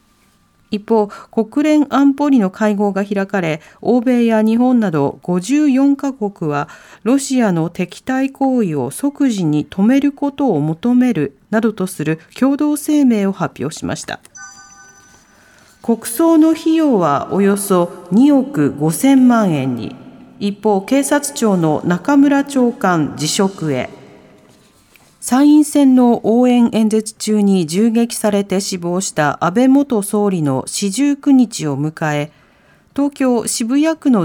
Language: Japanese